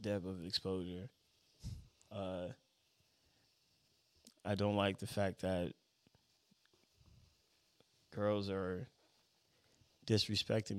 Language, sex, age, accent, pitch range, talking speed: English, male, 20-39, American, 95-115 Hz, 70 wpm